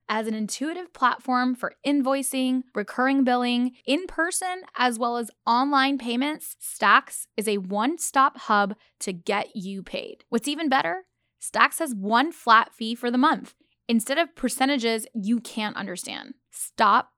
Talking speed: 145 wpm